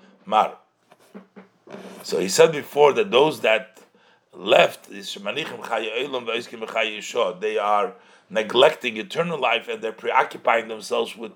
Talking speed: 100 wpm